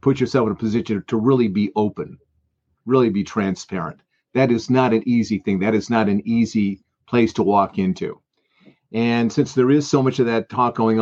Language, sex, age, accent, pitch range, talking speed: English, male, 50-69, American, 105-125 Hz, 200 wpm